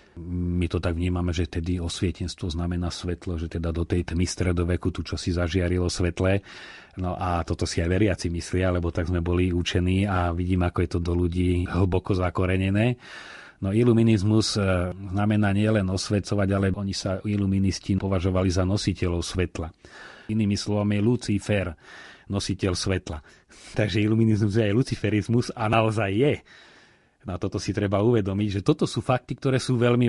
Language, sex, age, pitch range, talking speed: Slovak, male, 30-49, 90-110 Hz, 160 wpm